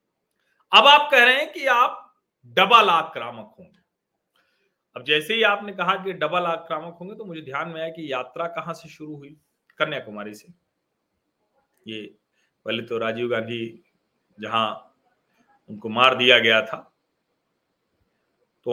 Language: Hindi